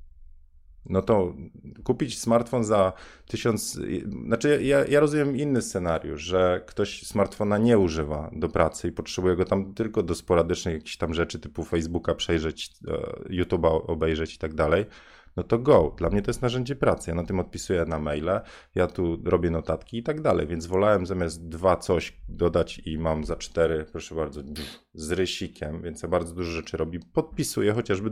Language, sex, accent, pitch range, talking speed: Polish, male, native, 80-110 Hz, 175 wpm